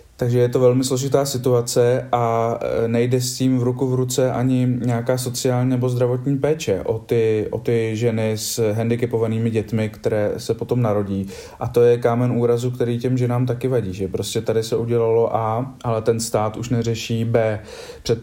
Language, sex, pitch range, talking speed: Slovak, male, 110-120 Hz, 180 wpm